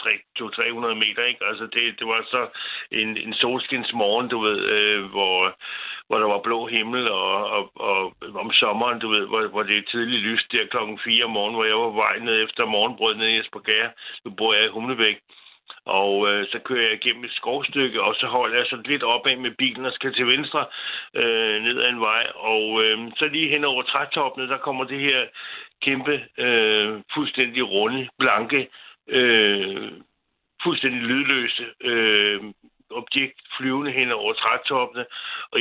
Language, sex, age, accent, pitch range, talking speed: Danish, male, 60-79, native, 110-130 Hz, 180 wpm